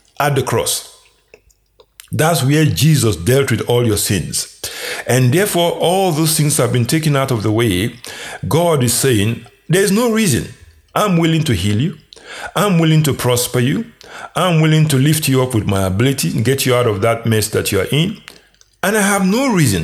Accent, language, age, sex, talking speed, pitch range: Nigerian, English, 50-69, male, 190 wpm, 115-155 Hz